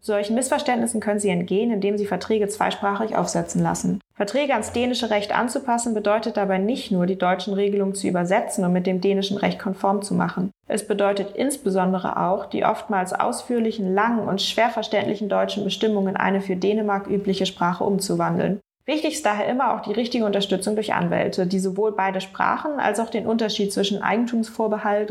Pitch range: 190-220 Hz